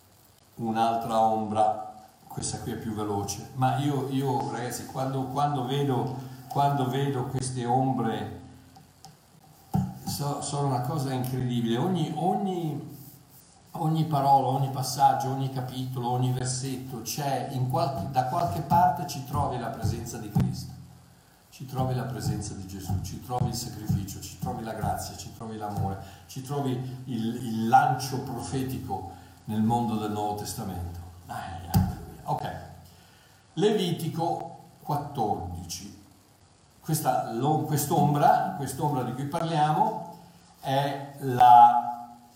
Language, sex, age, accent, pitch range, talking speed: Italian, male, 50-69, native, 110-145 Hz, 120 wpm